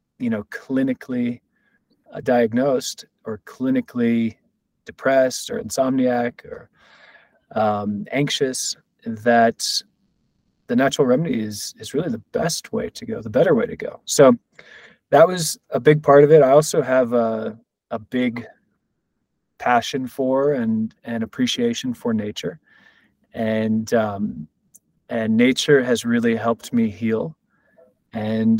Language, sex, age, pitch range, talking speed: English, male, 20-39, 110-165 Hz, 125 wpm